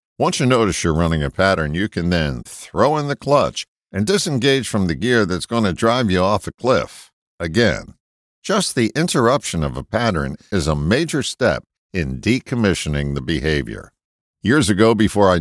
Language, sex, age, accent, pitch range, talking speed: English, male, 50-69, American, 80-120 Hz, 180 wpm